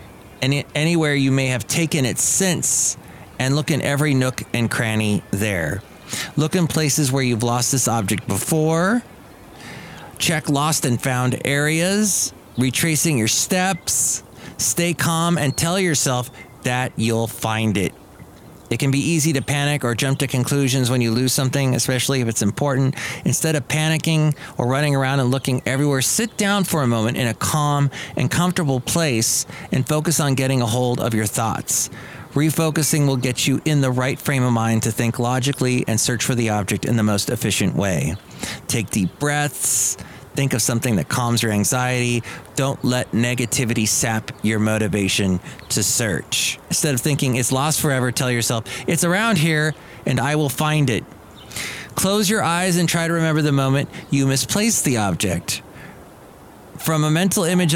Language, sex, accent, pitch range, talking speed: English, male, American, 120-155 Hz, 170 wpm